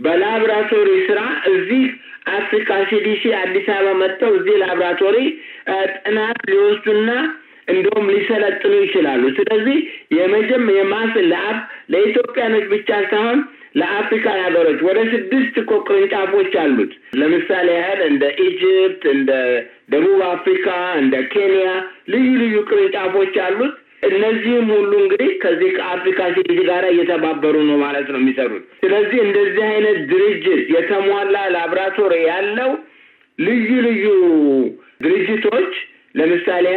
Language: Amharic